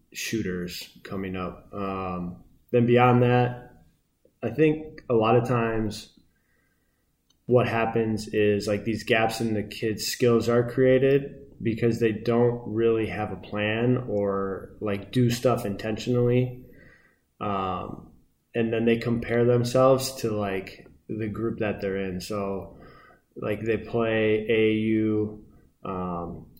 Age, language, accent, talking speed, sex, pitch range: 20-39, English, American, 125 wpm, male, 100-120 Hz